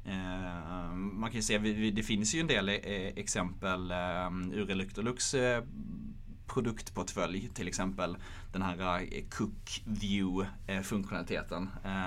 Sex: male